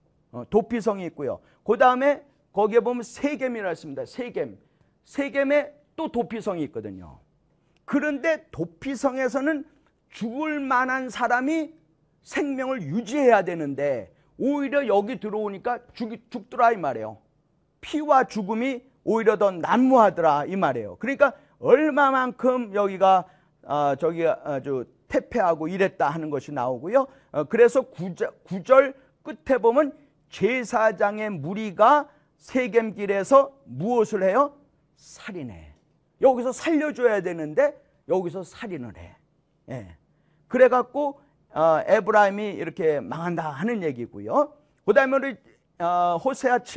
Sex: male